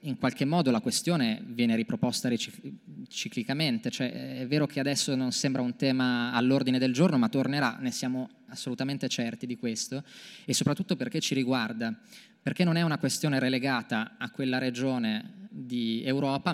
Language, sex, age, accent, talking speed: Italian, male, 20-39, native, 160 wpm